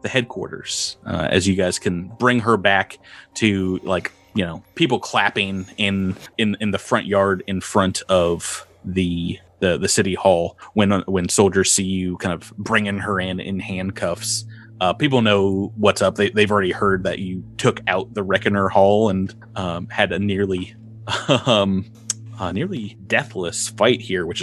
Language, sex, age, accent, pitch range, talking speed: English, male, 30-49, American, 95-115 Hz, 170 wpm